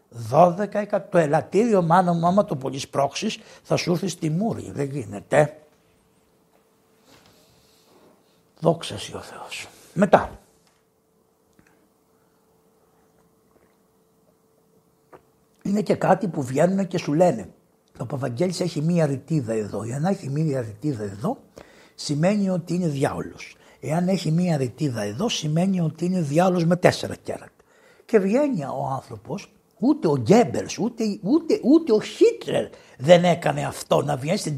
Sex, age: male, 60-79